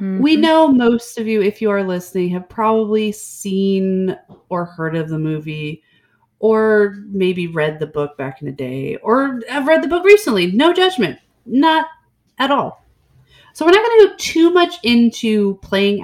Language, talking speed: English, 175 wpm